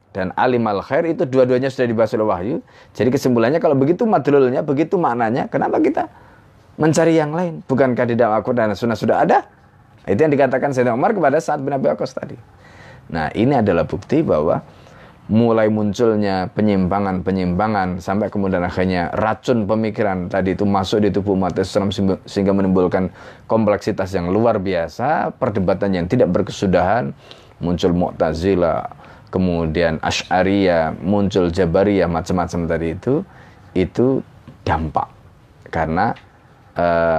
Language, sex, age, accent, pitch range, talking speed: Indonesian, male, 20-39, native, 90-115 Hz, 130 wpm